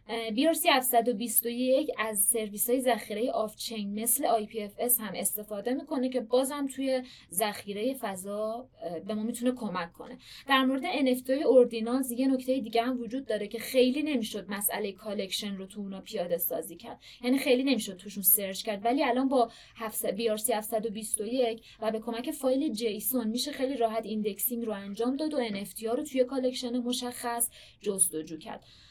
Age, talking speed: 20-39, 155 wpm